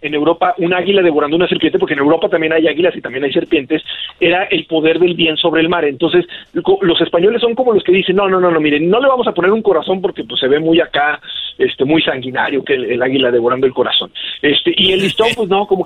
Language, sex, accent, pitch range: Spanish, male, Mexican, 155-210 Hz